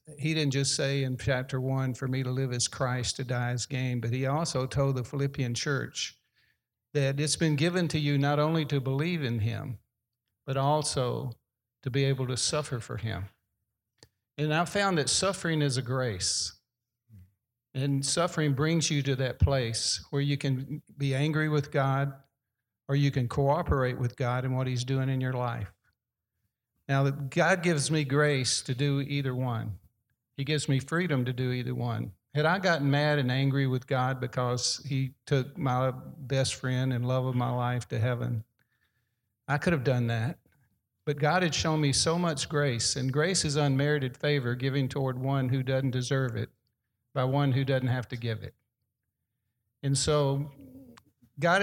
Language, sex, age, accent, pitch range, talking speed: English, male, 50-69, American, 120-145 Hz, 180 wpm